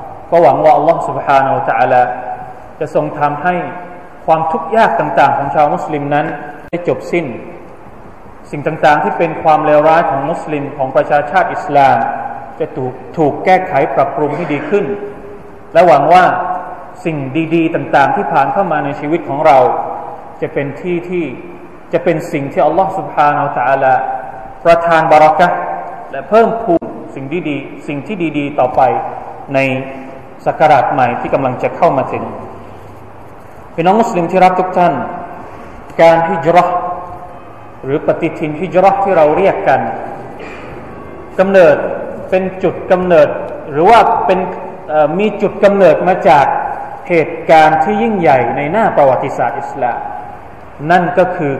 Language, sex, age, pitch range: Thai, male, 20-39, 140-180 Hz